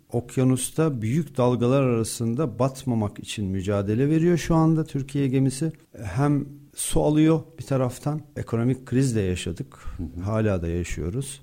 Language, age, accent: Turkish, 50-69, native